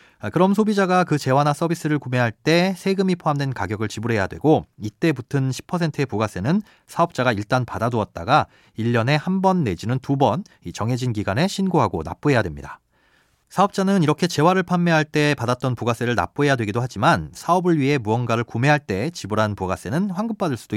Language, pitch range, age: Korean, 110-165 Hz, 30-49